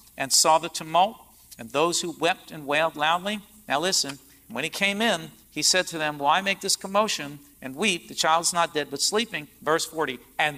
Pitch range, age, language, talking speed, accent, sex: 155-205 Hz, 50-69, English, 205 wpm, American, male